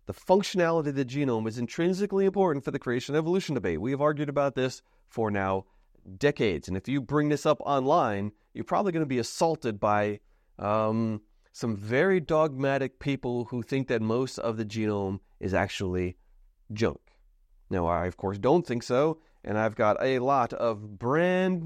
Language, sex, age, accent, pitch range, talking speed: English, male, 30-49, American, 110-150 Hz, 180 wpm